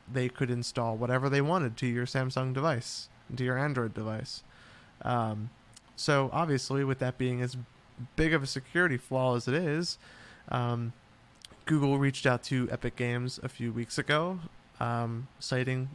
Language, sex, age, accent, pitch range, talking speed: English, male, 20-39, American, 120-140 Hz, 160 wpm